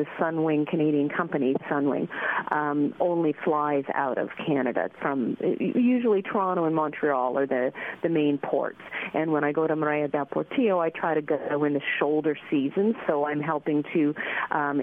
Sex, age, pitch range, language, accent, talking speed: female, 40-59, 150-180 Hz, English, American, 165 wpm